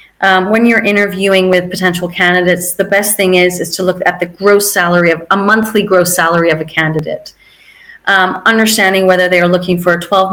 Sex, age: female, 30-49